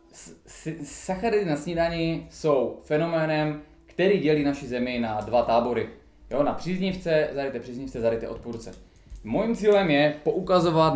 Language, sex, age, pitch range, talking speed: Czech, male, 20-39, 120-155 Hz, 125 wpm